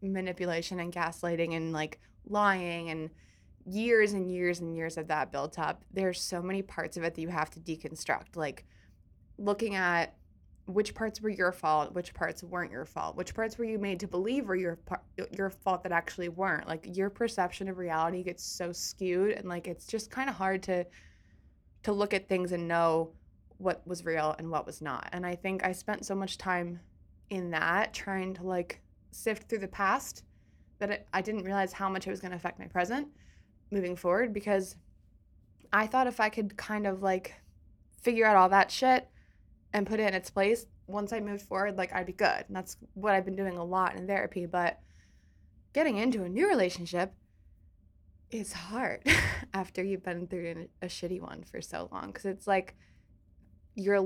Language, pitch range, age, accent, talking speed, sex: English, 165-200 Hz, 20-39, American, 195 wpm, female